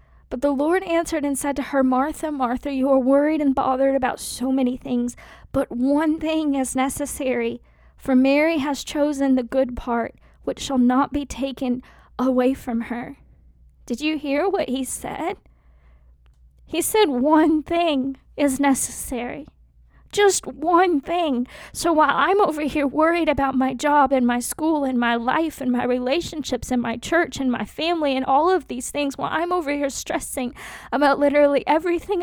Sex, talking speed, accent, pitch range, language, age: female, 170 wpm, American, 255-315 Hz, English, 20-39